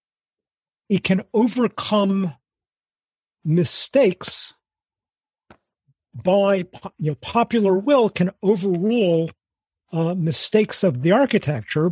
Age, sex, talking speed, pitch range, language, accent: 50-69, male, 80 wpm, 160-195 Hz, English, American